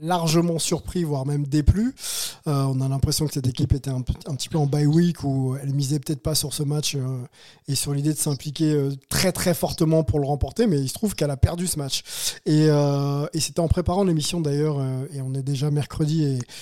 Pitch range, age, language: 140-170 Hz, 20-39, French